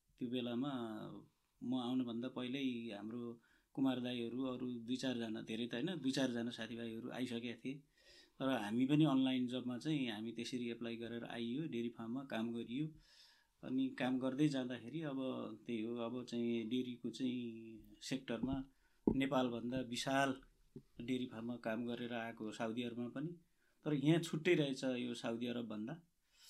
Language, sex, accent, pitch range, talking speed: English, male, Indian, 115-130 Hz, 60 wpm